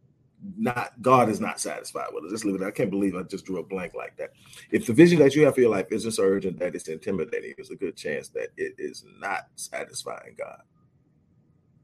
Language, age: English, 40-59